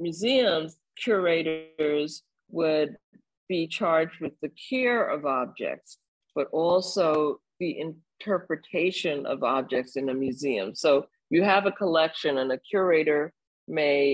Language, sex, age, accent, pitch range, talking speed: English, female, 50-69, American, 155-205 Hz, 120 wpm